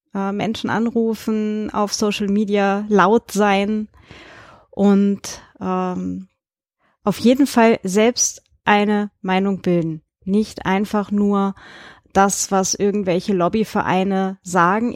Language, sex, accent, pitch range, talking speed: German, female, German, 185-215 Hz, 95 wpm